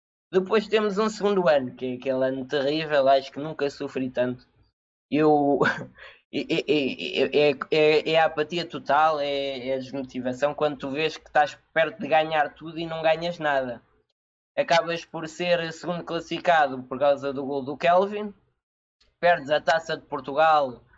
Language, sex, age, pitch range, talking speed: Portuguese, male, 20-39, 140-175 Hz, 150 wpm